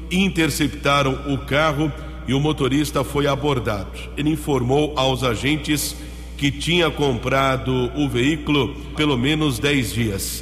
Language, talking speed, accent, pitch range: English, 120 wpm, Brazilian, 125-150 Hz